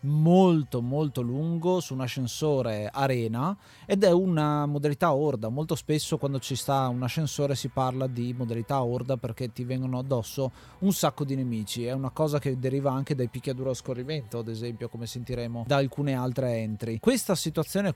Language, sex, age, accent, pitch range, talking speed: Italian, male, 30-49, native, 125-160 Hz, 170 wpm